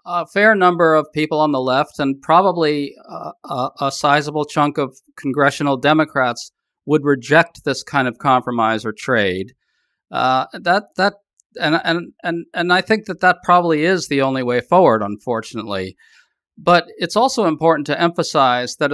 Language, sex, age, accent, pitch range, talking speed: English, male, 50-69, American, 140-175 Hz, 160 wpm